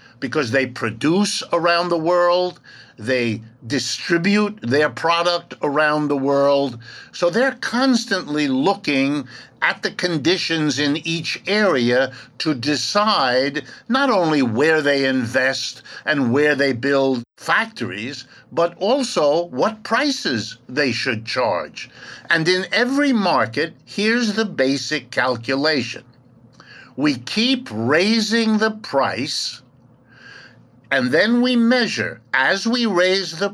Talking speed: 115 wpm